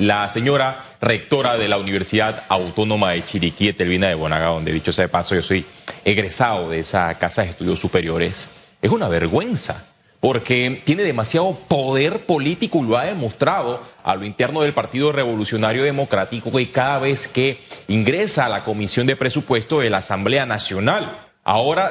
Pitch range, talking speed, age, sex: 115-165 Hz, 165 wpm, 30-49, male